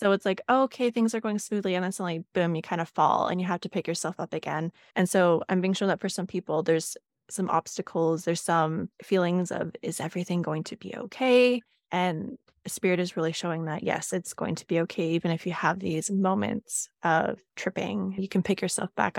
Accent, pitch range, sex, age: American, 170-205 Hz, female, 20-39